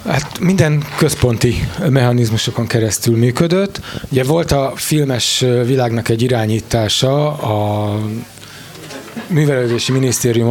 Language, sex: Hungarian, male